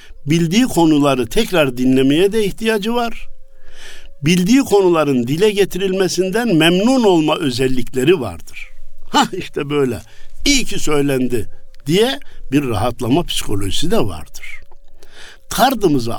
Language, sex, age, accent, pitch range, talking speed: Turkish, male, 60-79, native, 115-170 Hz, 105 wpm